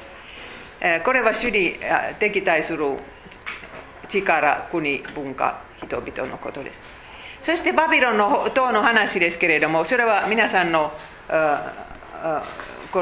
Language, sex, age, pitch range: Japanese, female, 40-59, 180-270 Hz